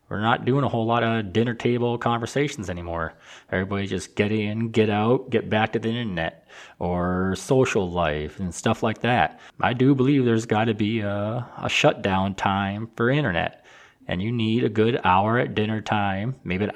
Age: 20-39